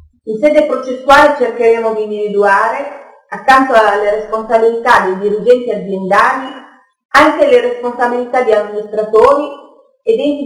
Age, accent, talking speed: 40-59, native, 110 wpm